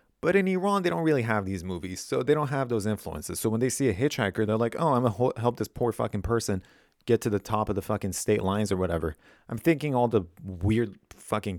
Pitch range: 95-130 Hz